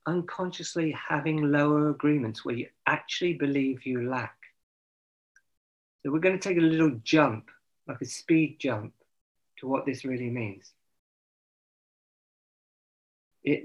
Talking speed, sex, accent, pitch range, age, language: 120 wpm, male, British, 115-155 Hz, 40-59, English